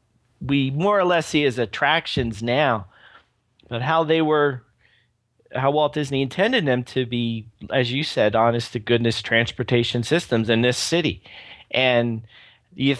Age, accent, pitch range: 40-59, American, 115-150 Hz